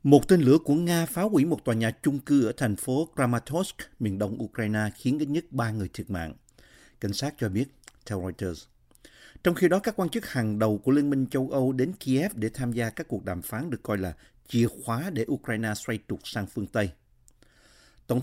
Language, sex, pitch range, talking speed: Vietnamese, male, 105-140 Hz, 220 wpm